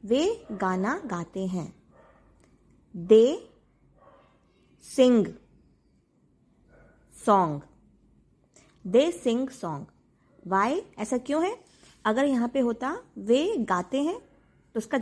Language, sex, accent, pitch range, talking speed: Hindi, female, native, 205-280 Hz, 90 wpm